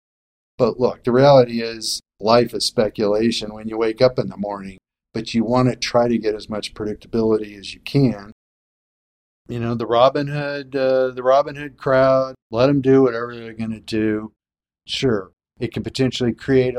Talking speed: 180 wpm